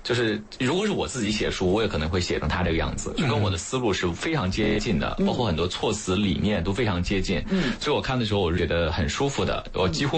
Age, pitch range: 20-39, 85-115 Hz